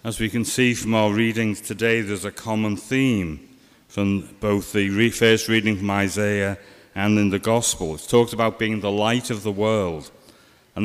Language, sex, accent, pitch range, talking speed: English, male, British, 95-115 Hz, 185 wpm